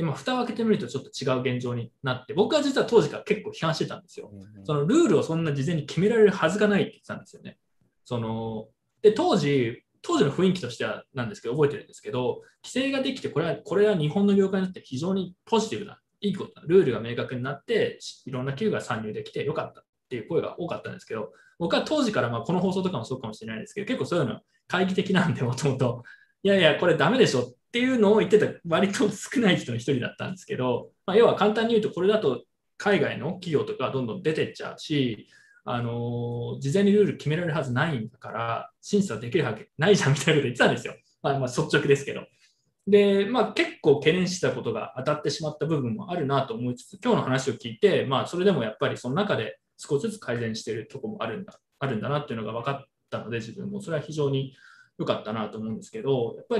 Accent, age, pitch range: native, 20-39, 130-210 Hz